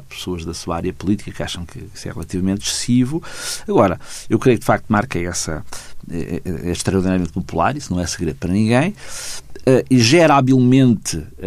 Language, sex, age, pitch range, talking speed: Portuguese, male, 50-69, 95-125 Hz, 180 wpm